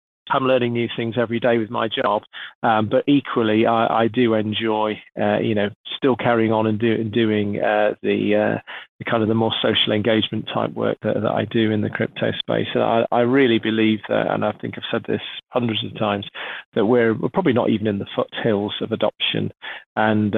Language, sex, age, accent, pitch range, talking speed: English, male, 30-49, British, 105-115 Hz, 210 wpm